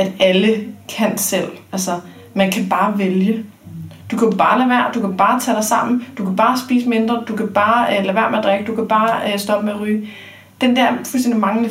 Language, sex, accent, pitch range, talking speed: Danish, female, native, 180-225 Hz, 225 wpm